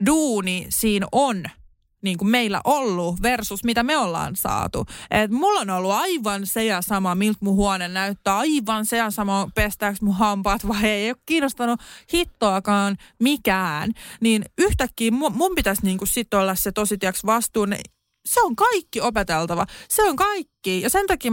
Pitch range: 200-275 Hz